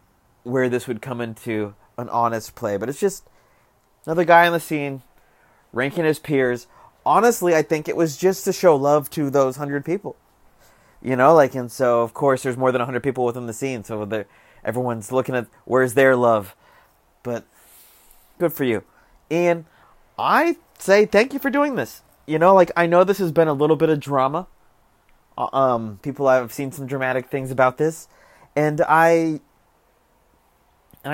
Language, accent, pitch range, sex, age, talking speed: English, American, 120-160 Hz, male, 30-49, 175 wpm